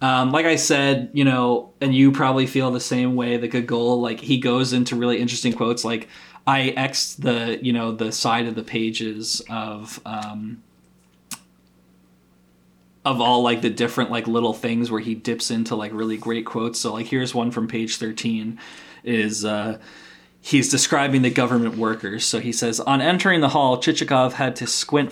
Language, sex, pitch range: English, male, 115-125 Hz